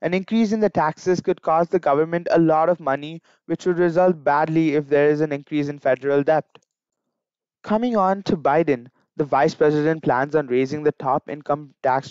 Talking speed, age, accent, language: 195 wpm, 20-39, Indian, English